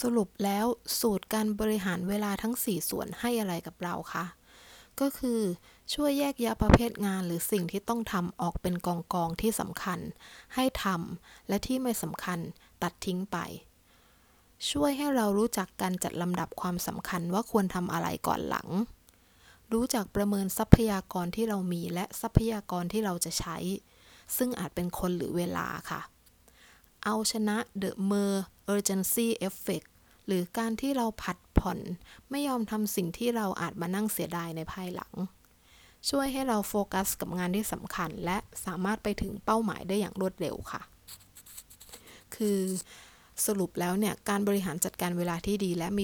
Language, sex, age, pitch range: English, female, 20-39, 180-220 Hz